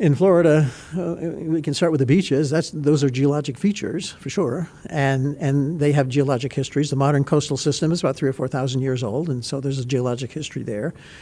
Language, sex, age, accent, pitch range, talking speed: English, male, 50-69, American, 135-155 Hz, 215 wpm